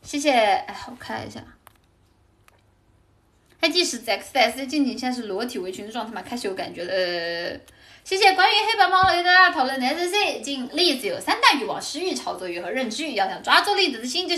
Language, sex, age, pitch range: Chinese, female, 10-29, 205-320 Hz